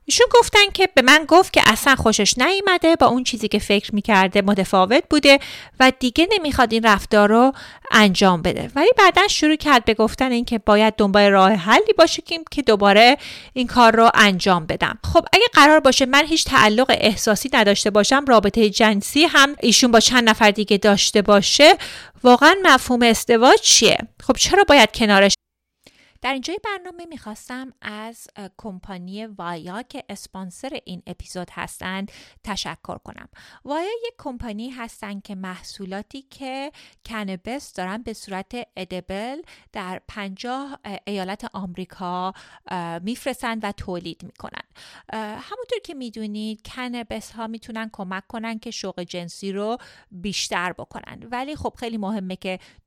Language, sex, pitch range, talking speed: Persian, female, 200-270 Hz, 145 wpm